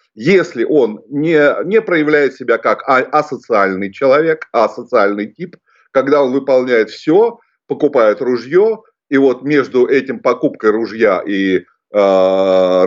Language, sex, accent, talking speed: Russian, male, native, 115 wpm